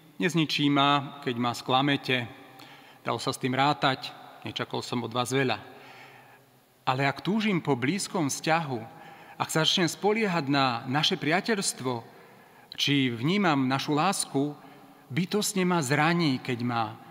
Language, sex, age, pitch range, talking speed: Slovak, male, 40-59, 130-170 Hz, 135 wpm